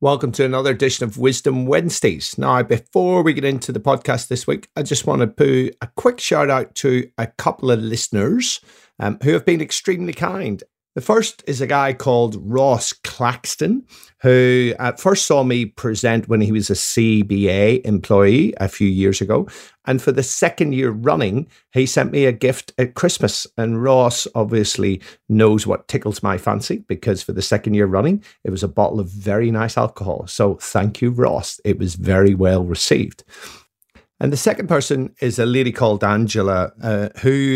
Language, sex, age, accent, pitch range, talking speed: English, male, 50-69, British, 100-130 Hz, 185 wpm